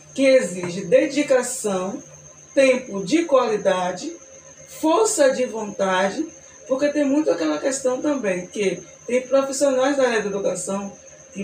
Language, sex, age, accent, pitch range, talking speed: Portuguese, female, 20-39, Brazilian, 210-275 Hz, 120 wpm